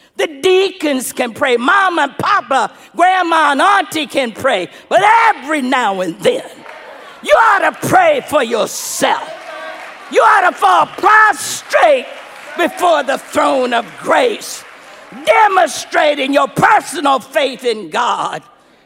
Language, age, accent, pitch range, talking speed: English, 50-69, American, 235-340 Hz, 125 wpm